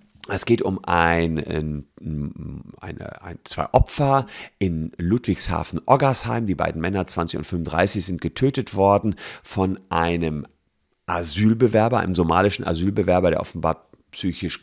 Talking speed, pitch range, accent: 120 wpm, 85-110 Hz, German